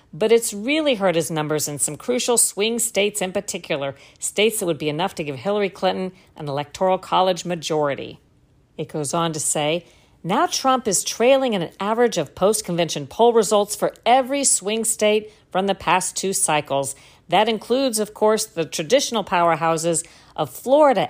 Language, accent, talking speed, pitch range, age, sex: English, American, 170 wpm, 155-215 Hz, 50-69, female